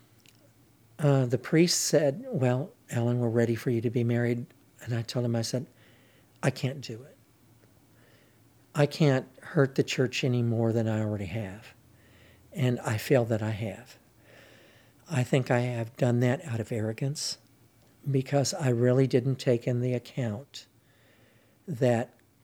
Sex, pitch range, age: male, 115-135 Hz, 60-79